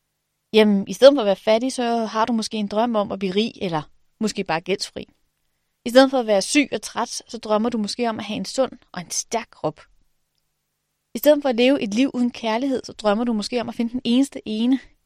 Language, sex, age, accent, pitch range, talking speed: Danish, female, 30-49, native, 205-255 Hz, 245 wpm